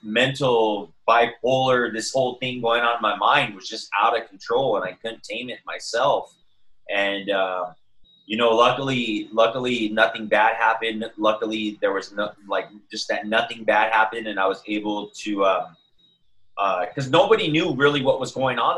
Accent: American